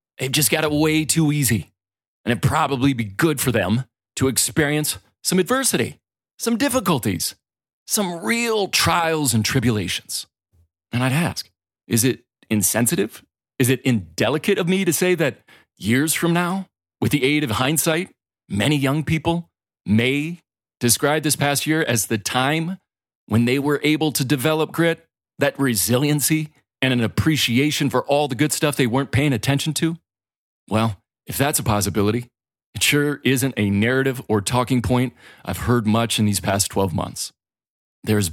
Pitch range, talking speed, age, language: 115-155 Hz, 160 wpm, 40-59, English